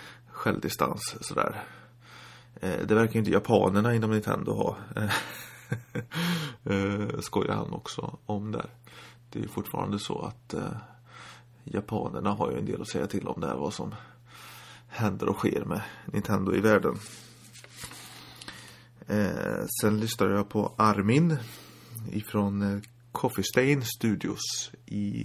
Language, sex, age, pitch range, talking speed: Swedish, male, 30-49, 105-120 Hz, 115 wpm